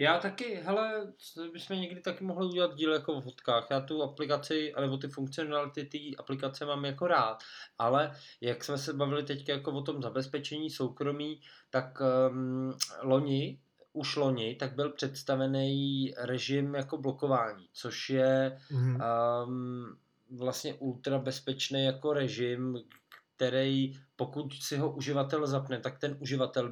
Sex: male